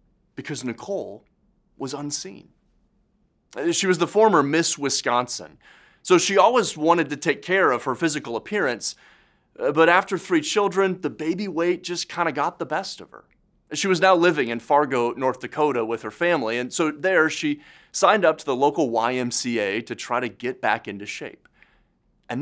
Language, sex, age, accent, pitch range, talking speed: English, male, 30-49, American, 140-190 Hz, 170 wpm